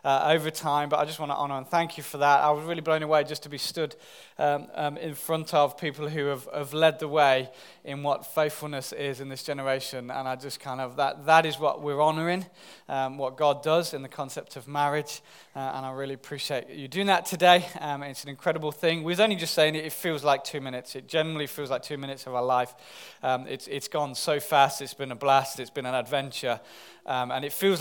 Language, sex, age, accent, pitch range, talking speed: English, male, 20-39, British, 145-175 Hz, 245 wpm